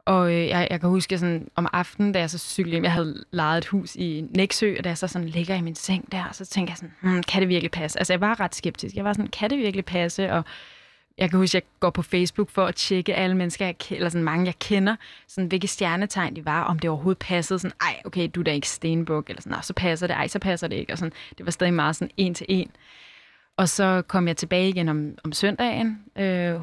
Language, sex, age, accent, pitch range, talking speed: Danish, female, 20-39, native, 170-190 Hz, 270 wpm